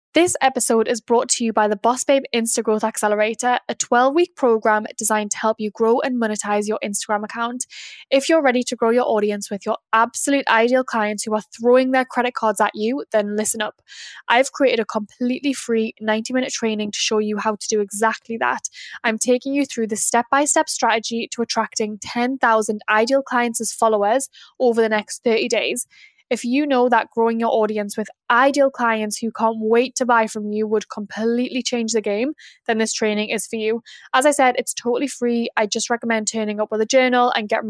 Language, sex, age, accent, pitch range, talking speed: English, female, 10-29, British, 220-250 Hz, 200 wpm